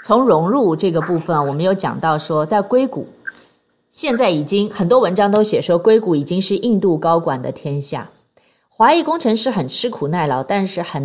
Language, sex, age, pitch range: Chinese, female, 20-39, 160-240 Hz